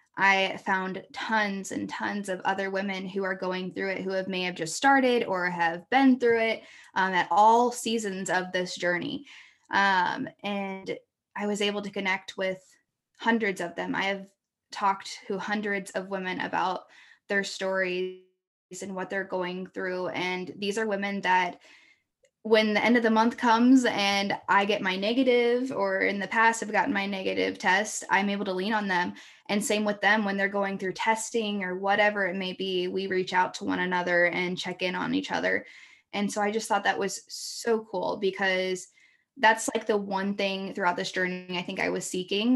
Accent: American